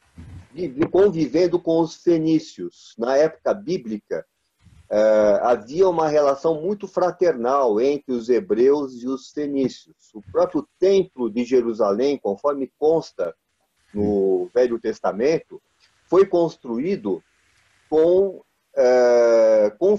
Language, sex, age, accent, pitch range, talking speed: Portuguese, male, 40-59, Brazilian, 120-175 Hz, 95 wpm